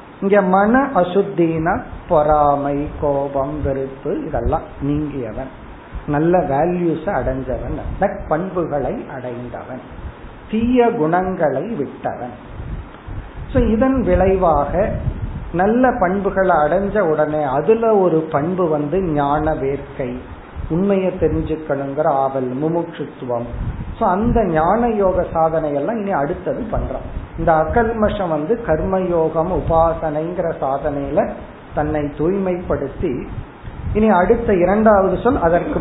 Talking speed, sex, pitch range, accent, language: 80 wpm, male, 140-185 Hz, native, Tamil